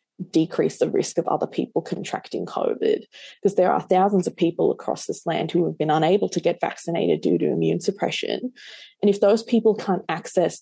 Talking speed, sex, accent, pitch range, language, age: 190 wpm, female, Australian, 165-200 Hz, English, 20-39